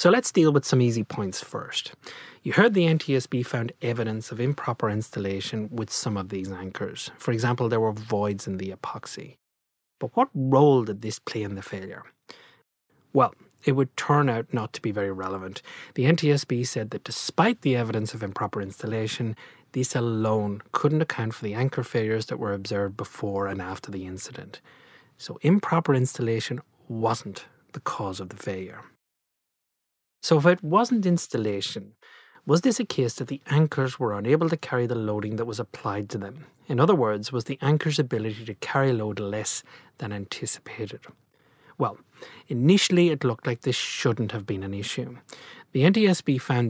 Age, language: 30-49, English